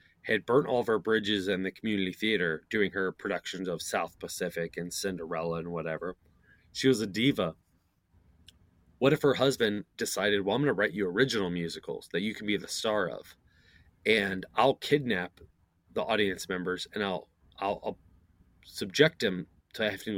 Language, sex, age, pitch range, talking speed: English, male, 30-49, 85-105 Hz, 175 wpm